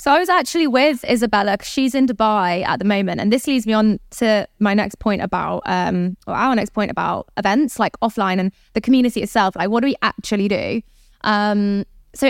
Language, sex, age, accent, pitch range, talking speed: English, female, 20-39, British, 200-245 Hz, 215 wpm